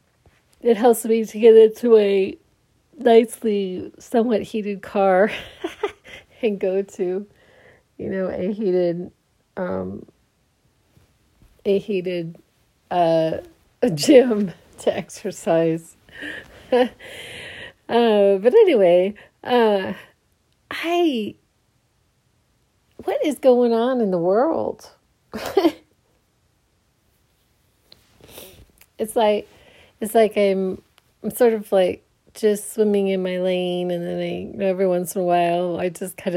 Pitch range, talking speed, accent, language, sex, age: 175-225 Hz, 105 wpm, American, English, female, 40-59